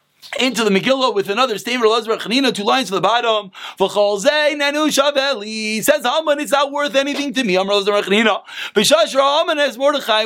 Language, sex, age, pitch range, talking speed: English, male, 30-49, 215-280 Hz, 185 wpm